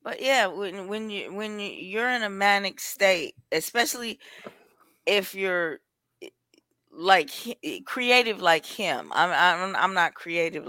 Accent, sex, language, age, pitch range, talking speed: American, female, English, 20-39, 155-205 Hz, 130 wpm